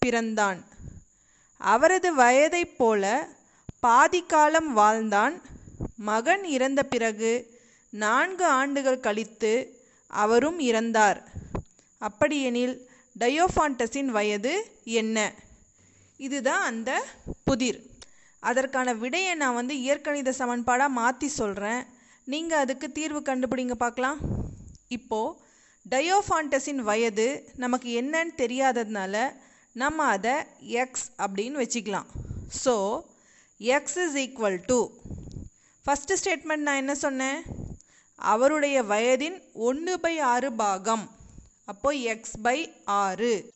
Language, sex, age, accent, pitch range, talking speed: Tamil, female, 30-49, native, 230-290 Hz, 85 wpm